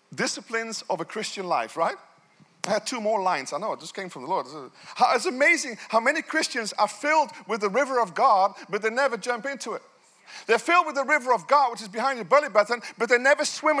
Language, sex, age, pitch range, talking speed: English, male, 40-59, 240-305 Hz, 235 wpm